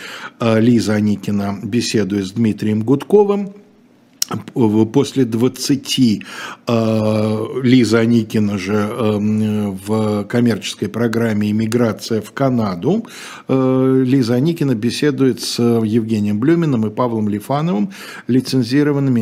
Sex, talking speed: male, 85 wpm